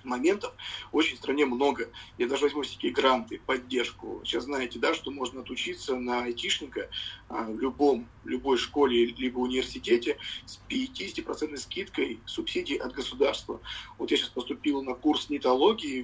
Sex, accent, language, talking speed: male, native, Russian, 145 wpm